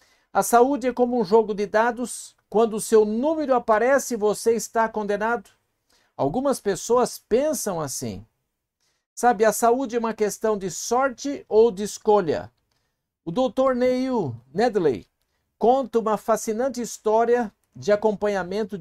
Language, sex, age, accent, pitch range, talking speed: Portuguese, male, 60-79, Brazilian, 195-240 Hz, 130 wpm